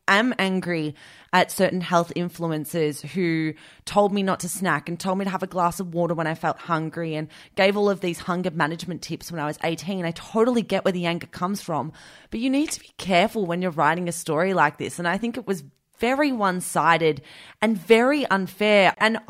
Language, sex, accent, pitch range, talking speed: English, female, Australian, 165-205 Hz, 215 wpm